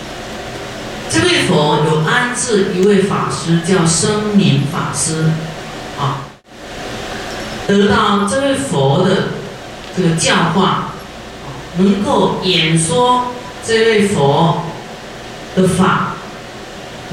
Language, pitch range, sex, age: Chinese, 165-200 Hz, female, 40-59